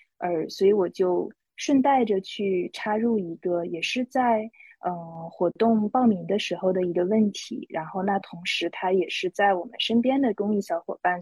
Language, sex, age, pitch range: Chinese, female, 20-39, 180-230 Hz